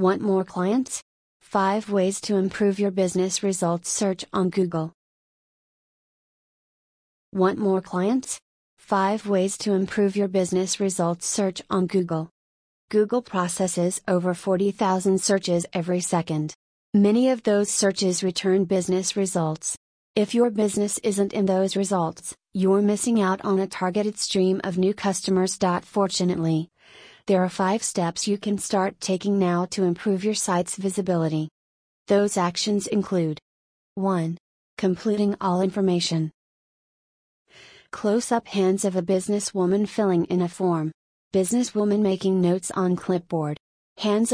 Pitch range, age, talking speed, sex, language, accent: 180-200 Hz, 30-49, 125 wpm, female, English, American